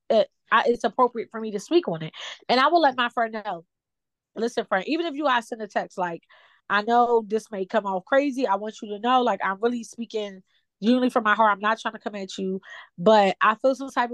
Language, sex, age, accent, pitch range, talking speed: English, female, 20-39, American, 195-240 Hz, 240 wpm